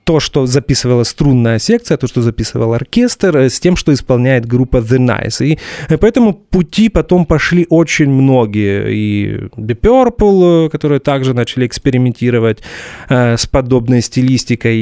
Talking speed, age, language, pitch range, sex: 140 wpm, 30-49, English, 115-155 Hz, male